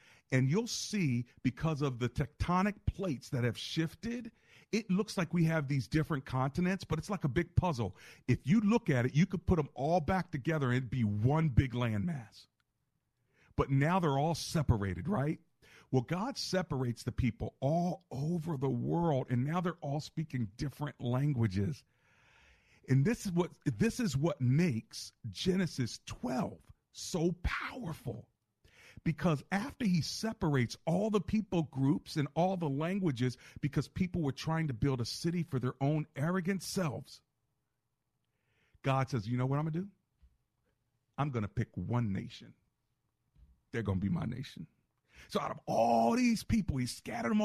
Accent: American